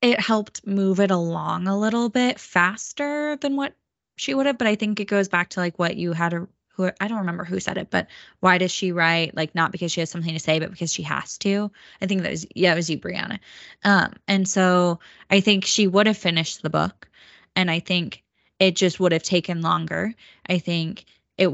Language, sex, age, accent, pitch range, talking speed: English, female, 10-29, American, 165-205 Hz, 230 wpm